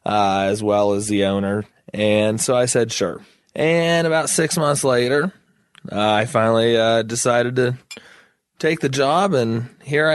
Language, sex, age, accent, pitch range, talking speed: English, male, 20-39, American, 110-130 Hz, 160 wpm